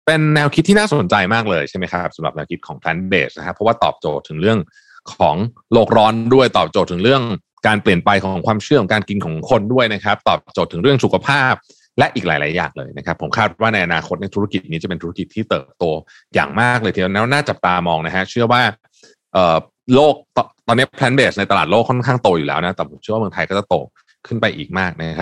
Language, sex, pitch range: Thai, male, 95-125 Hz